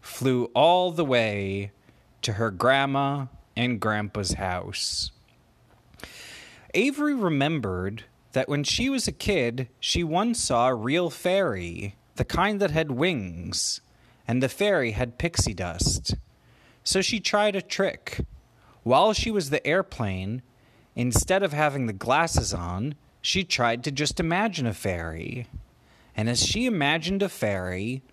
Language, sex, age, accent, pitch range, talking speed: English, male, 30-49, American, 110-180 Hz, 135 wpm